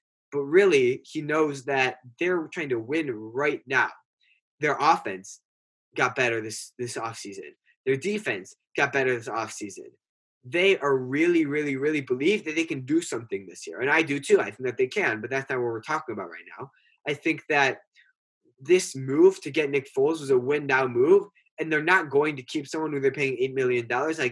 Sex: male